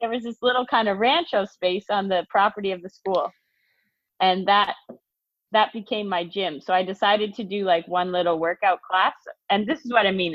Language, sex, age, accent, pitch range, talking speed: English, female, 20-39, American, 185-230 Hz, 210 wpm